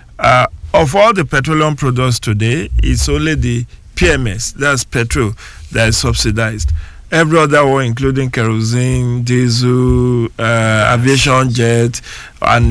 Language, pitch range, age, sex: English, 105-160 Hz, 50-69, male